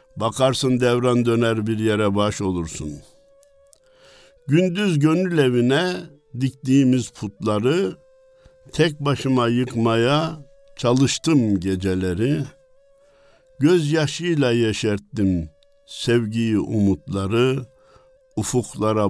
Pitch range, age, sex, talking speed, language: 105-155 Hz, 60-79, male, 70 wpm, Turkish